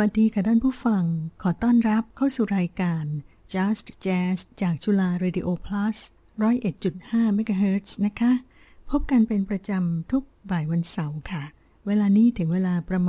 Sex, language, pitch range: female, Thai, 175-215 Hz